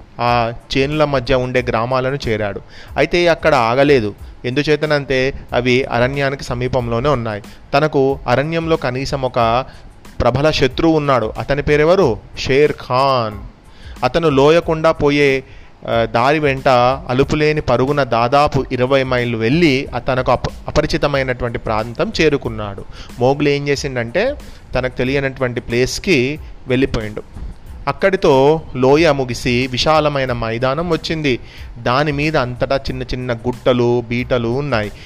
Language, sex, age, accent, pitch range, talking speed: Telugu, male, 30-49, native, 120-145 Hz, 105 wpm